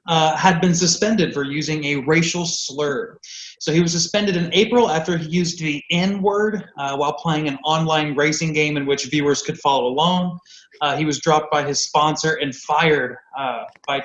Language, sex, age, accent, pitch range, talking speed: English, male, 20-39, American, 140-175 Hz, 185 wpm